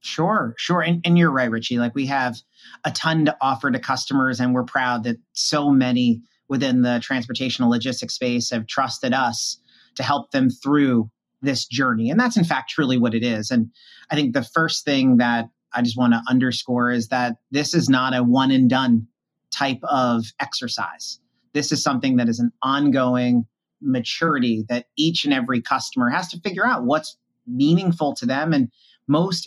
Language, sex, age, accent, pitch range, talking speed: English, male, 30-49, American, 120-150 Hz, 185 wpm